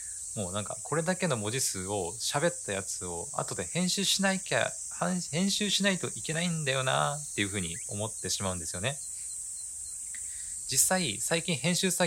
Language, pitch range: Japanese, 90-130 Hz